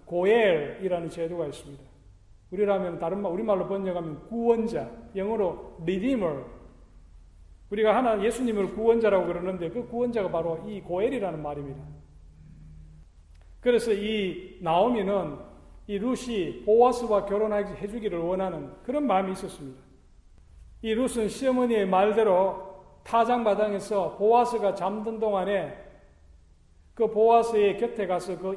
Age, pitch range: 40-59, 170-230 Hz